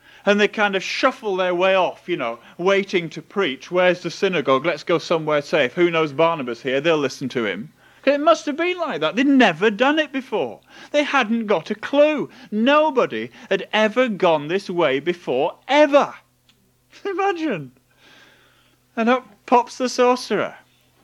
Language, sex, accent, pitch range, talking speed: English, male, British, 170-230 Hz, 165 wpm